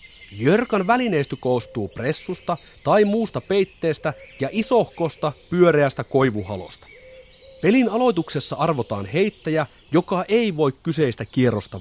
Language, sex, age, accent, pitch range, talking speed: Finnish, male, 30-49, native, 125-185 Hz, 100 wpm